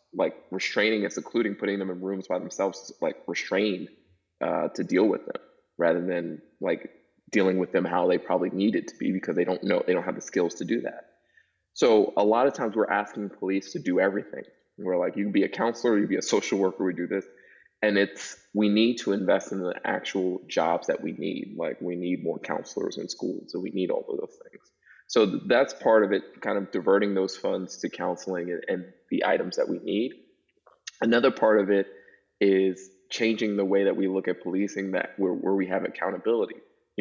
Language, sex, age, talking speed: English, male, 20-39, 215 wpm